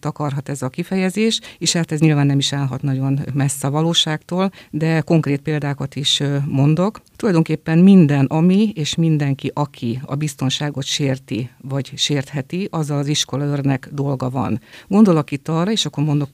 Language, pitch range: Hungarian, 140-155 Hz